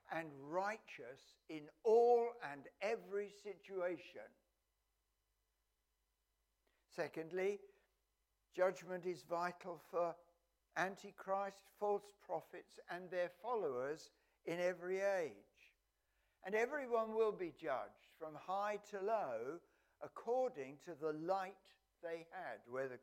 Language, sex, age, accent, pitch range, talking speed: English, male, 60-79, British, 135-205 Hz, 95 wpm